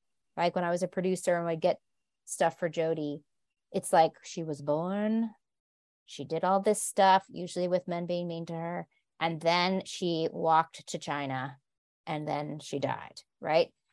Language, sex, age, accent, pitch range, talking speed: English, female, 30-49, American, 170-205 Hz, 170 wpm